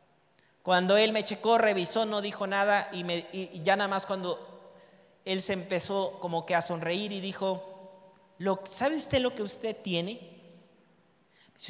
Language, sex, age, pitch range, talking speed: Spanish, male, 40-59, 185-230 Hz, 165 wpm